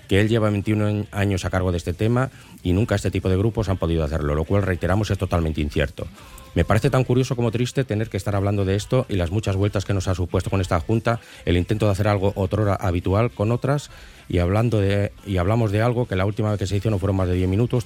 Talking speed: 260 wpm